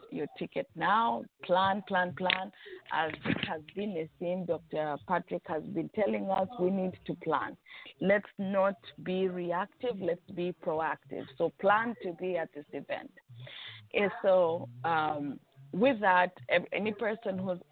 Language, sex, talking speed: English, female, 145 wpm